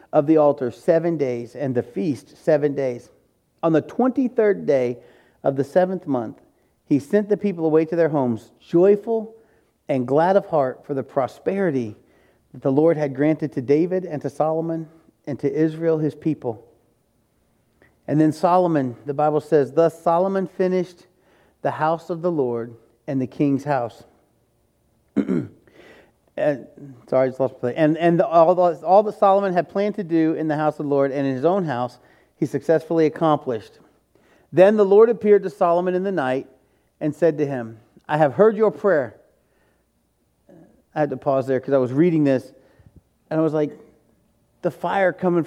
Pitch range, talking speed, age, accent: 140-170 Hz, 175 wpm, 40-59, American